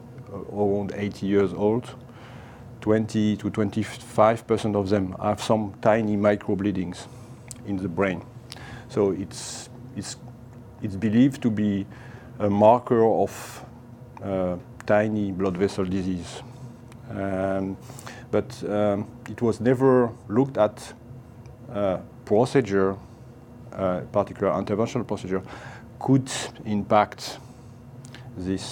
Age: 50-69